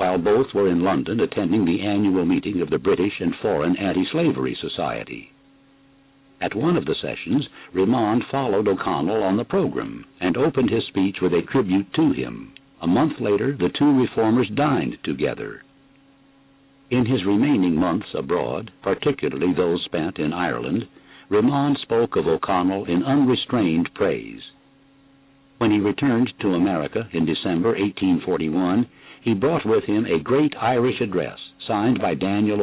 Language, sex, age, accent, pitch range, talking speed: English, male, 60-79, American, 100-135 Hz, 145 wpm